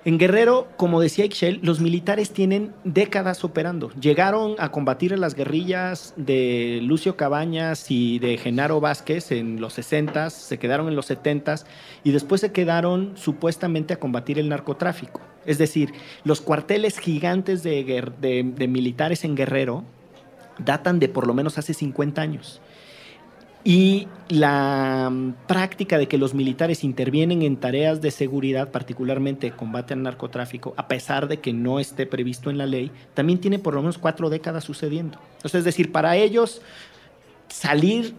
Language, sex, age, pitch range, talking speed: Spanish, male, 40-59, 140-180 Hz, 155 wpm